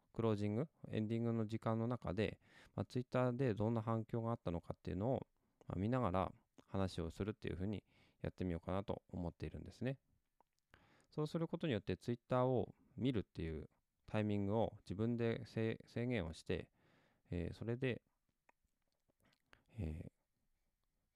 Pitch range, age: 85-115 Hz, 20-39